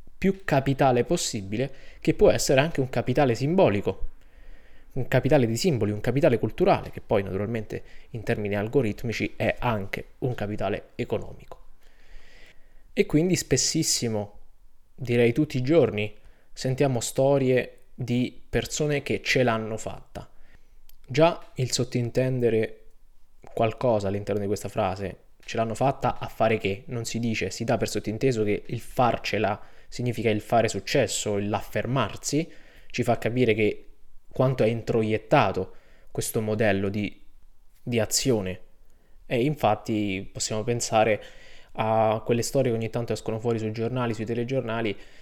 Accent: native